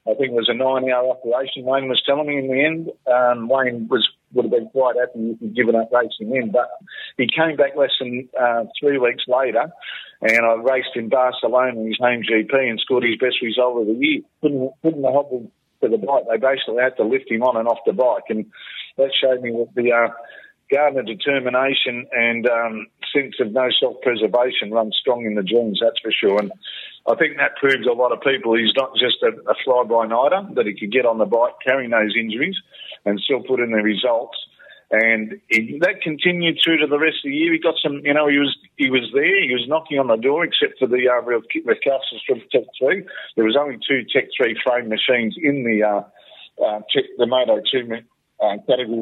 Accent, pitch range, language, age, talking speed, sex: Australian, 115-145 Hz, English, 50-69, 225 wpm, male